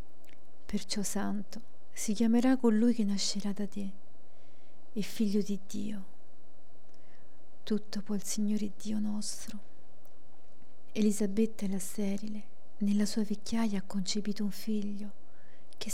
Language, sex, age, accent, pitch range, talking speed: Italian, female, 40-59, native, 195-215 Hz, 115 wpm